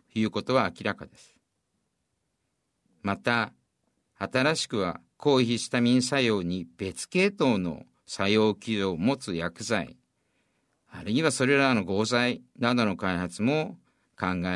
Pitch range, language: 100-130 Hz, Japanese